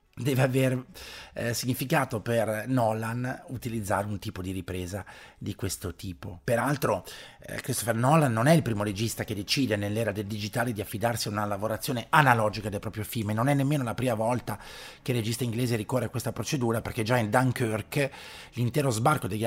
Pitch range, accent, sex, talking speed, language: 105-130 Hz, native, male, 180 wpm, Italian